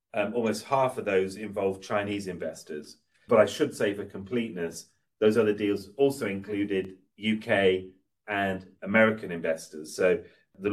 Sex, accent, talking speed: male, British, 140 wpm